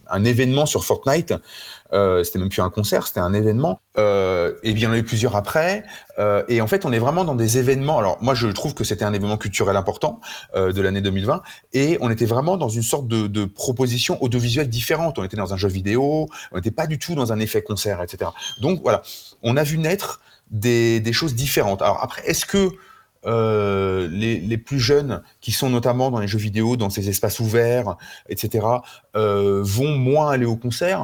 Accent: French